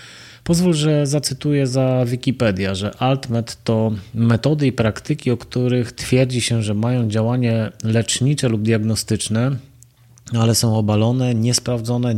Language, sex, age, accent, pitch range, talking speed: Polish, male, 30-49, native, 110-125 Hz, 125 wpm